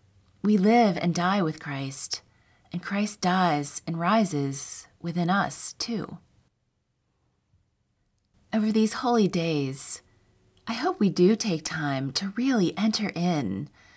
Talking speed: 120 wpm